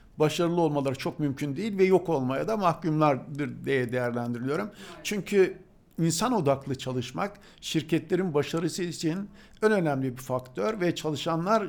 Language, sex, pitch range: Turkish, male, 130-175 Hz